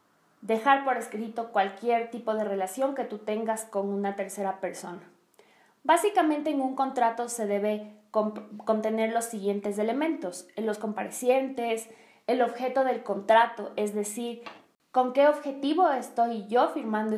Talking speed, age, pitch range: 140 wpm, 20-39, 210-255 Hz